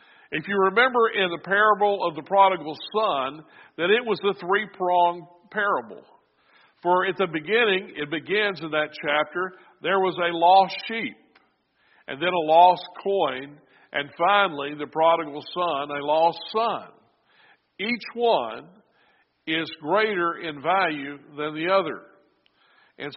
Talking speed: 135 wpm